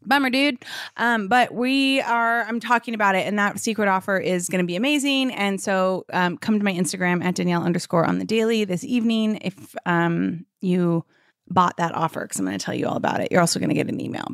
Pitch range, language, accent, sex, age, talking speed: 180-230 Hz, English, American, female, 30-49, 235 wpm